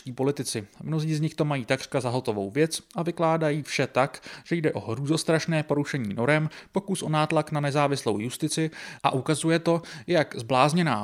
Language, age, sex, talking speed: Czech, 30-49, male, 165 wpm